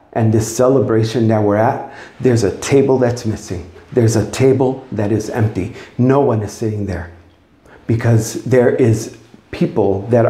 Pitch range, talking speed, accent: 105-140 Hz, 155 wpm, American